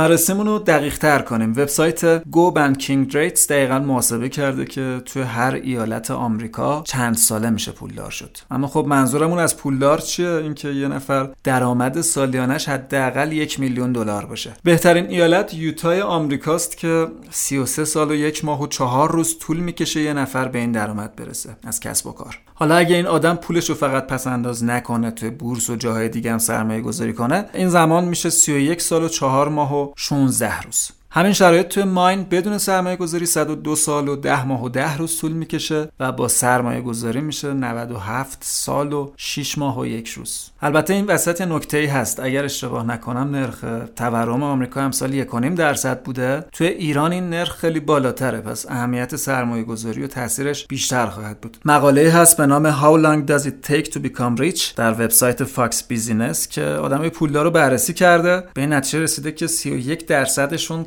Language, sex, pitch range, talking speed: Persian, male, 125-160 Hz, 180 wpm